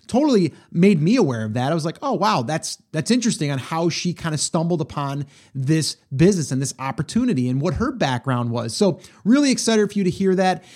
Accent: American